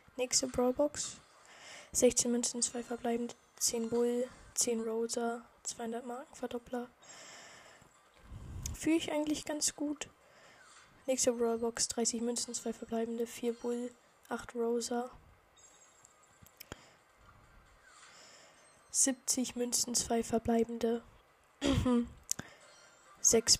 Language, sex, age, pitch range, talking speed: German, female, 10-29, 235-250 Hz, 85 wpm